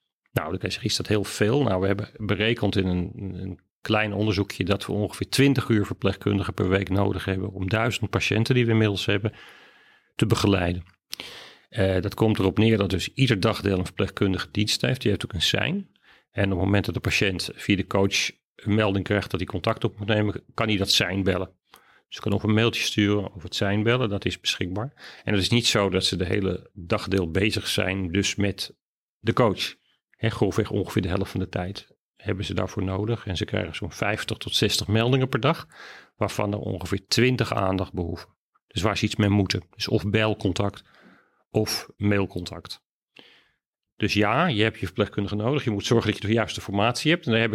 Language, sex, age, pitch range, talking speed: Dutch, male, 40-59, 95-110 Hz, 205 wpm